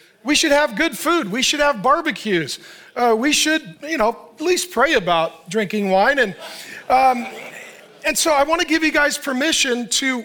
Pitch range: 220-285 Hz